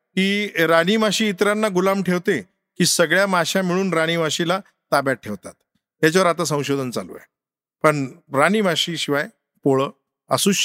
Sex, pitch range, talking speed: male, 135-180 Hz, 130 wpm